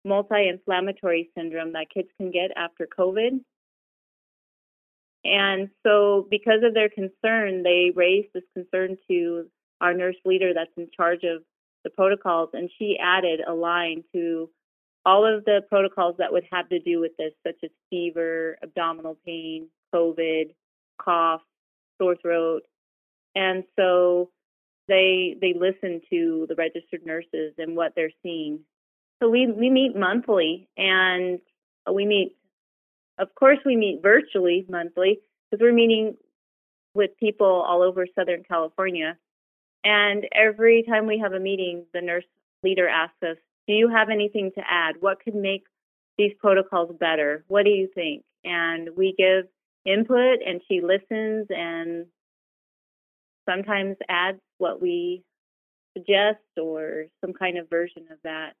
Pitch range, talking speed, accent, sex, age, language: 170-200 Hz, 140 wpm, American, female, 30-49, English